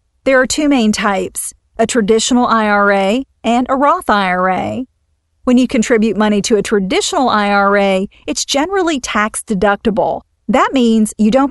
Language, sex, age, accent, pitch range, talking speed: English, female, 40-59, American, 205-250 Hz, 140 wpm